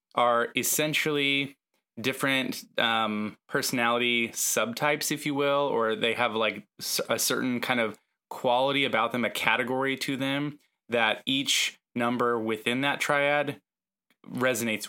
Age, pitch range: 20-39, 115-140 Hz